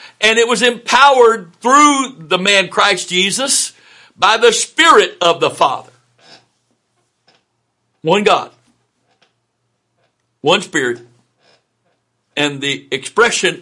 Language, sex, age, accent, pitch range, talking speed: English, male, 60-79, American, 140-210 Hz, 95 wpm